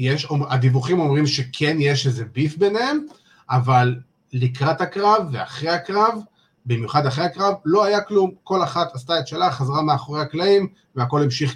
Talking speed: 150 wpm